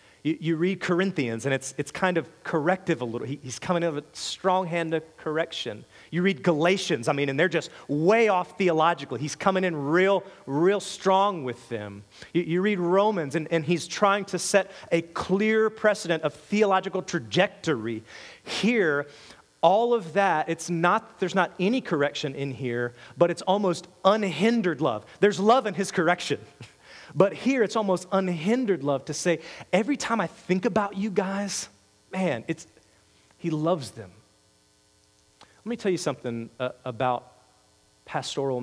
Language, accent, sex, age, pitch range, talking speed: English, American, male, 30-49, 120-185 Hz, 155 wpm